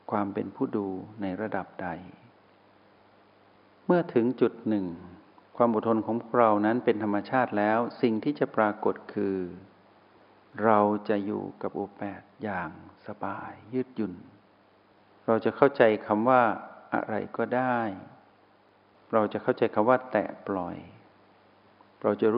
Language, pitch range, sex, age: Thai, 100-120 Hz, male, 60-79